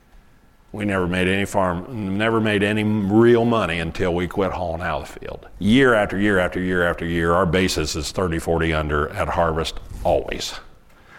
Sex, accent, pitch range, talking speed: male, American, 90-105 Hz, 180 wpm